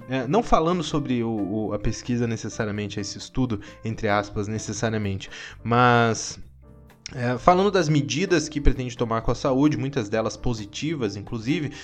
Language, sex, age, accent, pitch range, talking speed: Portuguese, male, 20-39, Brazilian, 105-145 Hz, 150 wpm